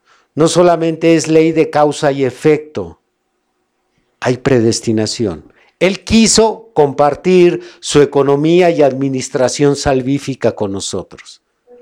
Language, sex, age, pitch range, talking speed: Spanish, male, 50-69, 135-190 Hz, 100 wpm